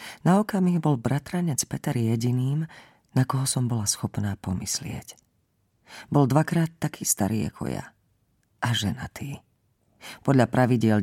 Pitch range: 110-135 Hz